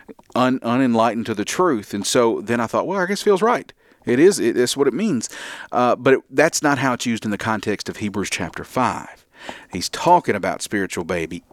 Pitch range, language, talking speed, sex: 100-130 Hz, English, 225 wpm, male